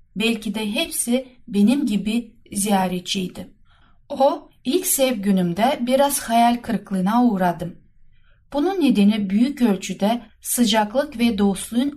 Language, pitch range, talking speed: Turkish, 205-260 Hz, 105 wpm